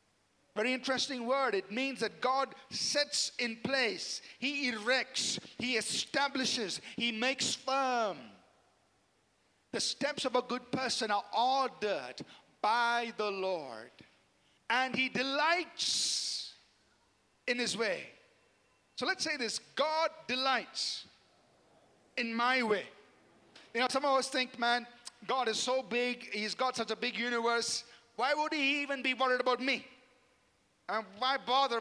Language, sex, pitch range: English, male, 235-275 Hz